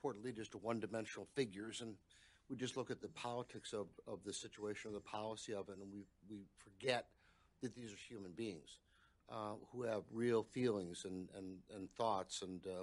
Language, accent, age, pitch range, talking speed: English, American, 60-79, 105-125 Hz, 190 wpm